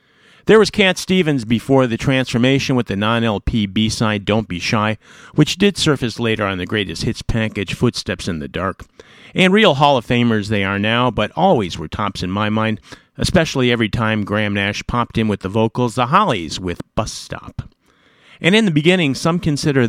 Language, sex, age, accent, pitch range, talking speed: English, male, 50-69, American, 105-145 Hz, 190 wpm